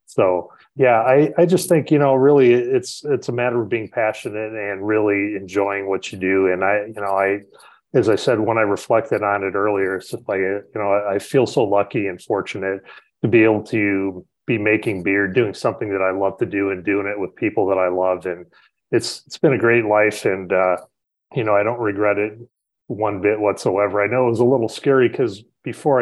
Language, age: English, 30-49